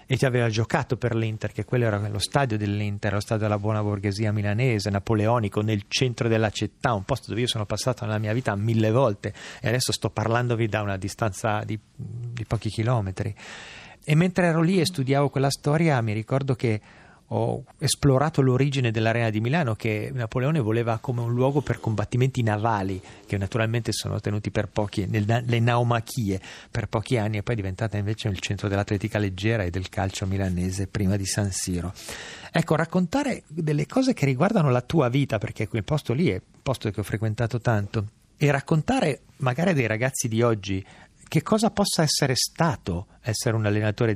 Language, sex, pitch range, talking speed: Italian, male, 105-130 Hz, 180 wpm